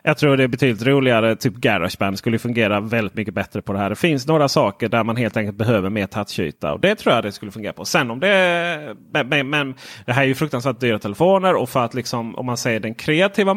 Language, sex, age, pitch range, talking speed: Swedish, male, 30-49, 110-140 Hz, 245 wpm